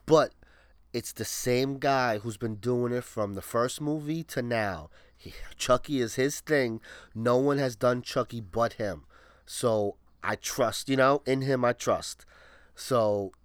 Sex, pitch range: male, 120-145 Hz